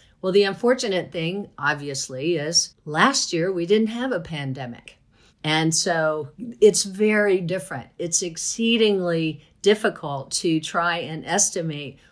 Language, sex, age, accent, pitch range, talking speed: English, female, 50-69, American, 155-185 Hz, 125 wpm